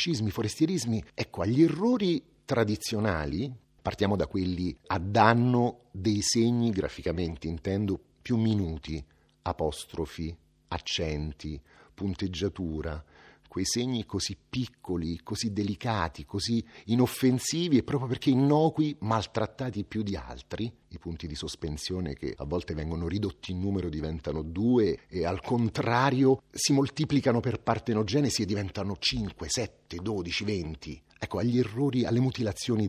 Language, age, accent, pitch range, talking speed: Italian, 40-59, native, 85-125 Hz, 120 wpm